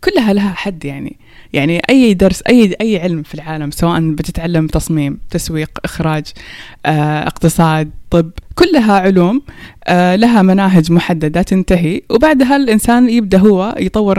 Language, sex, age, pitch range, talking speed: Persian, female, 20-39, 165-210 Hz, 130 wpm